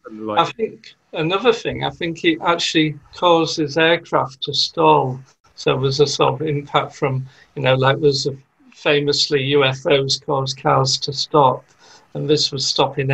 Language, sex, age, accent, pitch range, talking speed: English, male, 50-69, British, 135-155 Hz, 165 wpm